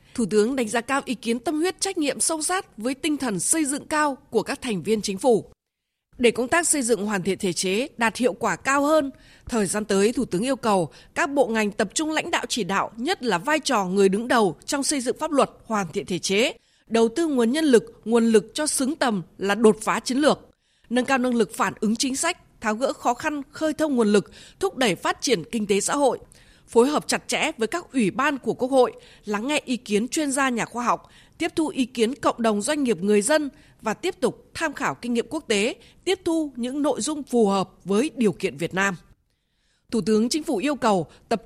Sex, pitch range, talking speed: female, 215-295 Hz, 245 wpm